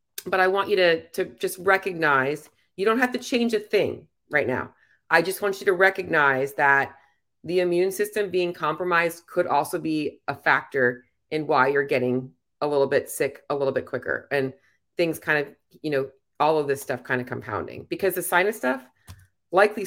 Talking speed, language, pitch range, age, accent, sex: 195 wpm, English, 140-185 Hz, 30-49, American, female